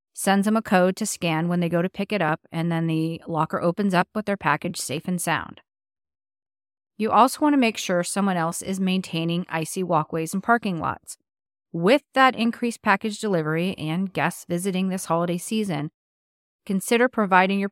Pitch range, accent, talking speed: 160-200 Hz, American, 180 wpm